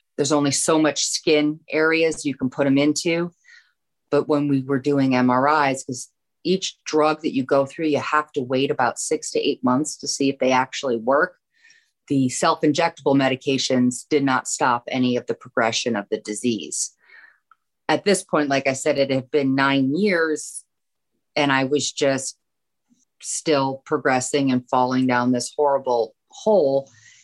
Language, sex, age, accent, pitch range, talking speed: English, female, 30-49, American, 130-160 Hz, 165 wpm